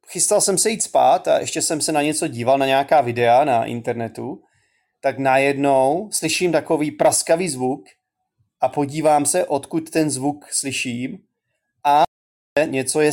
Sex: male